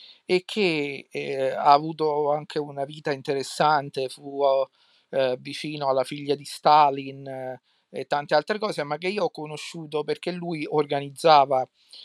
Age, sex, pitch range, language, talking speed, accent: 50-69, male, 140-160 Hz, Italian, 140 wpm, native